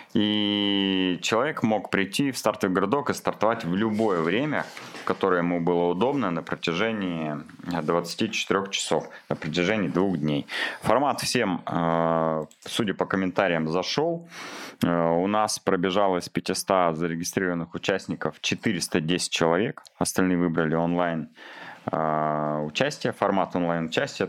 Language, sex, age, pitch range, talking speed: Russian, male, 30-49, 85-95 Hz, 110 wpm